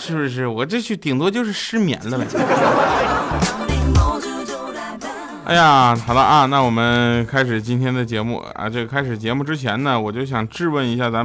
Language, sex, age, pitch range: Chinese, male, 20-39, 115-185 Hz